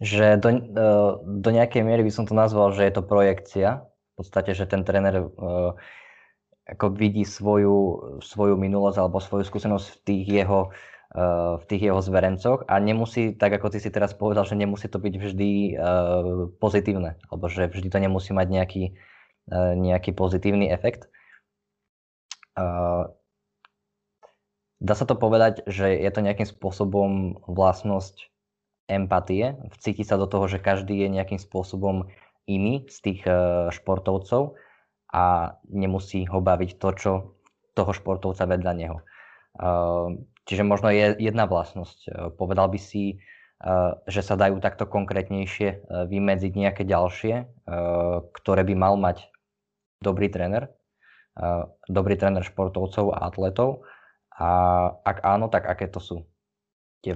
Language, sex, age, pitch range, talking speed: Slovak, male, 20-39, 90-100 Hz, 135 wpm